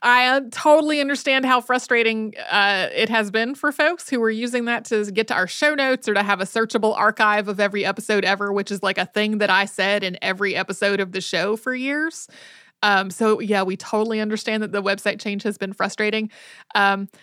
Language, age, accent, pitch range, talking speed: English, 30-49, American, 200-245 Hz, 215 wpm